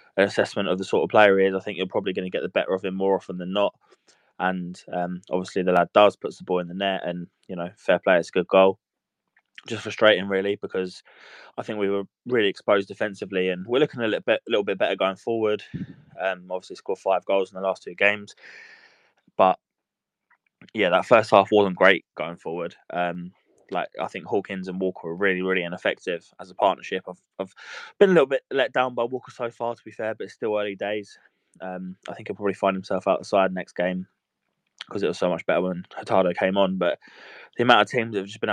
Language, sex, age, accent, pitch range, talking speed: English, male, 20-39, British, 90-100 Hz, 230 wpm